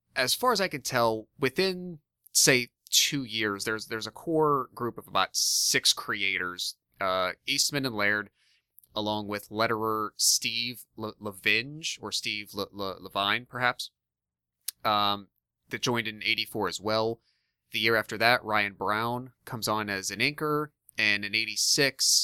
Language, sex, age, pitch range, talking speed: English, male, 30-49, 95-120 Hz, 150 wpm